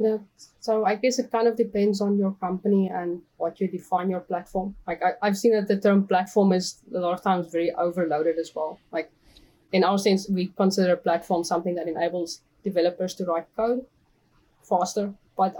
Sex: female